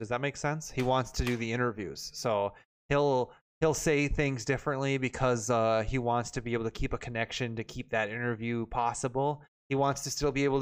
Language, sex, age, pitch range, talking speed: English, male, 20-39, 115-135 Hz, 215 wpm